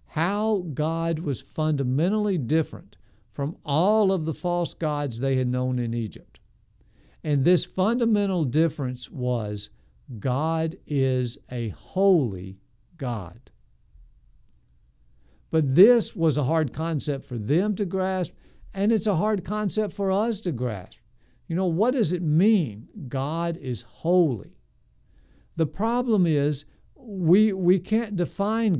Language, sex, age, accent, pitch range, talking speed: English, male, 50-69, American, 130-180 Hz, 125 wpm